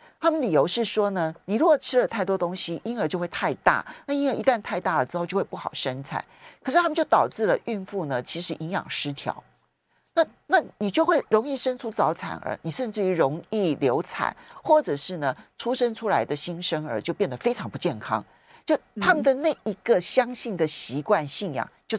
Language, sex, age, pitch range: Chinese, male, 50-69, 150-225 Hz